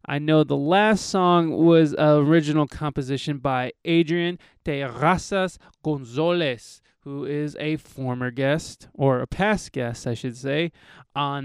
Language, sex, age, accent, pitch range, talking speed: English, male, 20-39, American, 135-175 Hz, 135 wpm